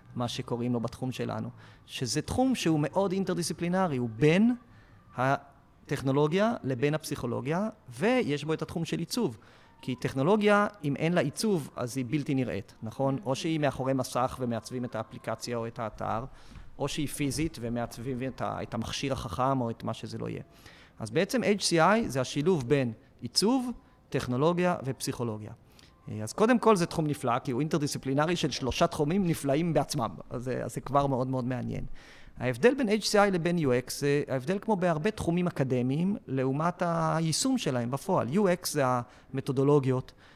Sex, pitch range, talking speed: male, 125-160 Hz, 155 wpm